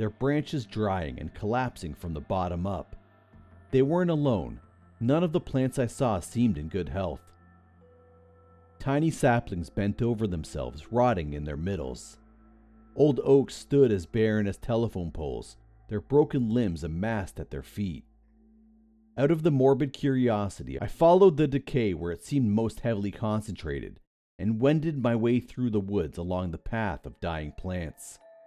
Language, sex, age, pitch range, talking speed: English, male, 40-59, 90-135 Hz, 155 wpm